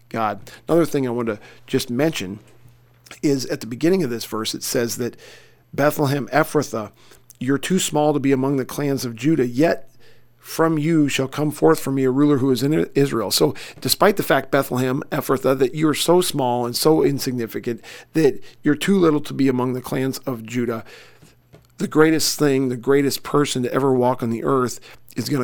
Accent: American